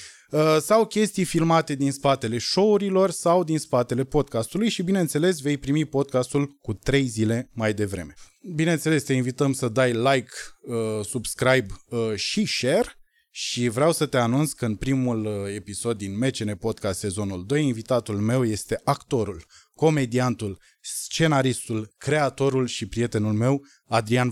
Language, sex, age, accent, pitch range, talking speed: Romanian, male, 20-39, native, 115-160 Hz, 135 wpm